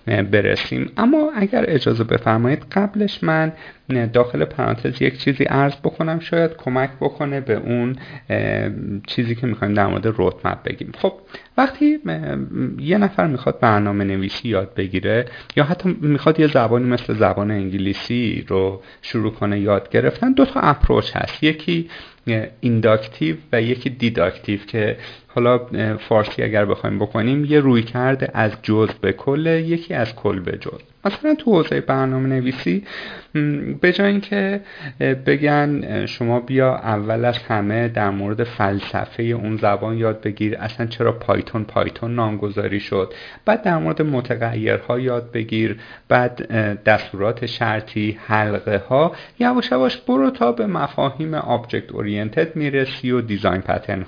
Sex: male